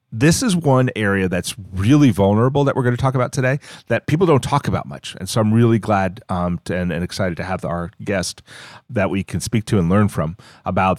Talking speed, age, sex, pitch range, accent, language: 230 wpm, 40-59, male, 95-120 Hz, American, English